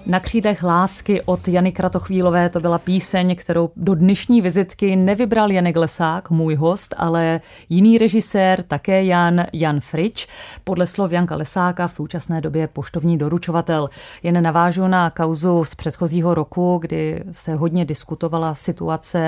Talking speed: 145 wpm